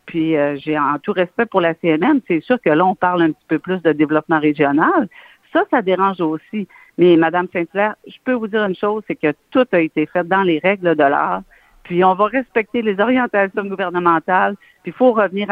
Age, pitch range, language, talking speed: 50-69, 160-210 Hz, French, 220 wpm